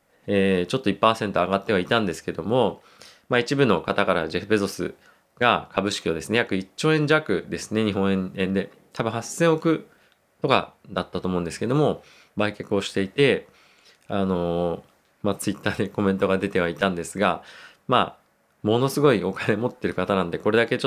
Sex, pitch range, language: male, 90-115 Hz, Japanese